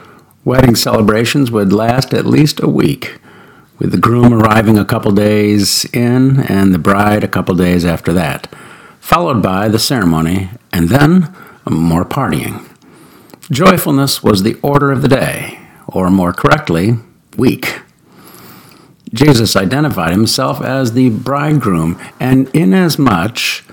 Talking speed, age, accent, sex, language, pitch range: 130 wpm, 50-69, American, male, English, 100-135 Hz